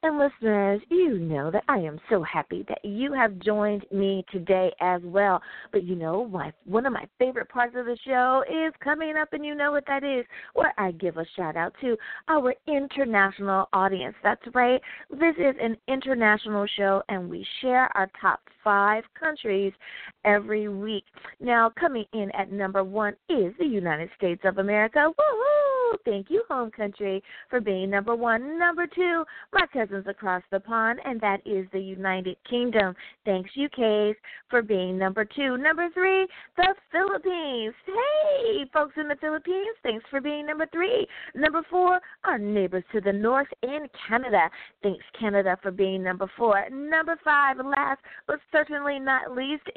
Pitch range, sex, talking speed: 195-295 Hz, female, 170 wpm